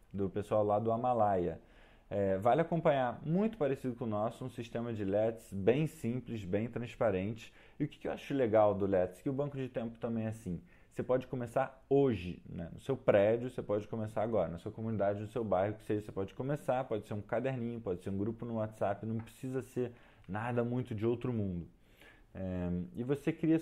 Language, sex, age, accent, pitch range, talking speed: Portuguese, male, 20-39, Brazilian, 105-130 Hz, 205 wpm